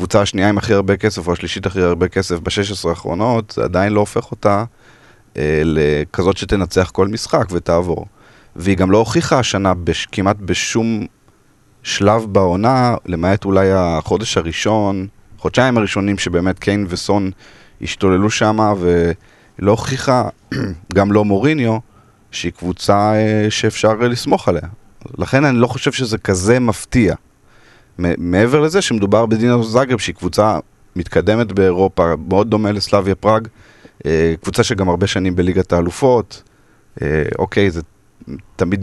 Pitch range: 85-110 Hz